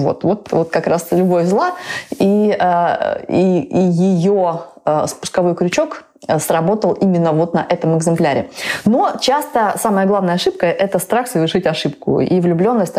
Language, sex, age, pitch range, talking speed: Russian, female, 20-39, 160-195 Hz, 135 wpm